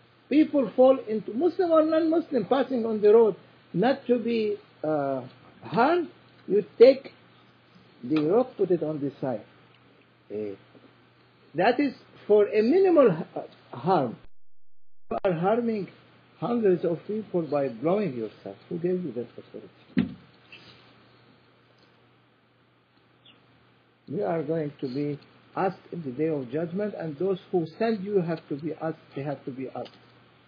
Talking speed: 135 wpm